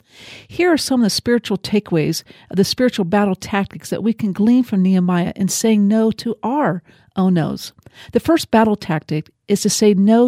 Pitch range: 185-245 Hz